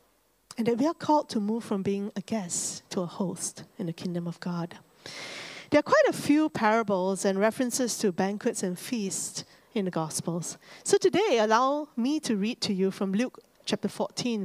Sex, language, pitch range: female, English, 195-275 Hz